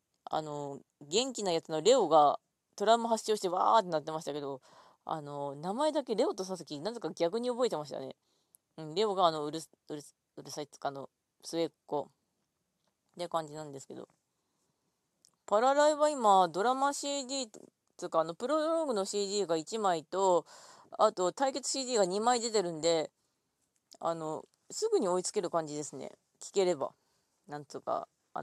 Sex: female